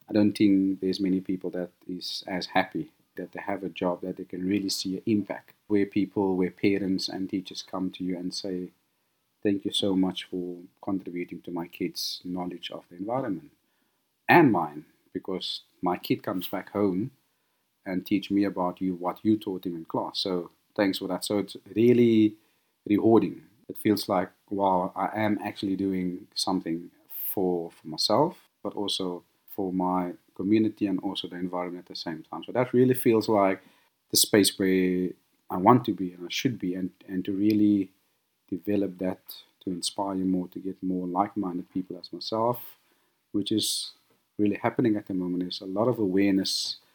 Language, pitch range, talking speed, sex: English, 90-100 Hz, 185 wpm, male